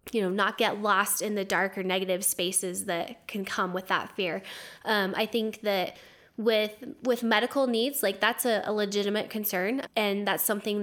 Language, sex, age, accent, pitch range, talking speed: English, female, 10-29, American, 195-225 Hz, 190 wpm